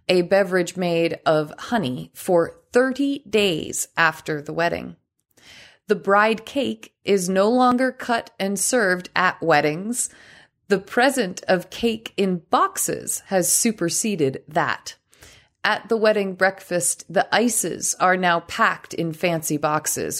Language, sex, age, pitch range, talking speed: English, female, 30-49, 160-205 Hz, 130 wpm